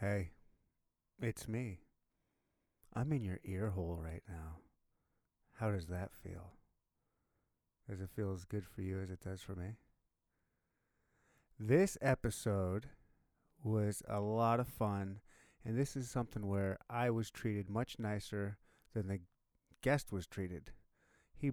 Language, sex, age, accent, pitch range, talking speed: English, male, 30-49, American, 100-115 Hz, 135 wpm